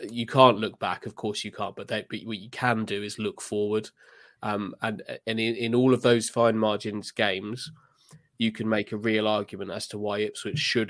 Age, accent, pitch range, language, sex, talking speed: 20-39, British, 105-115 Hz, English, male, 220 wpm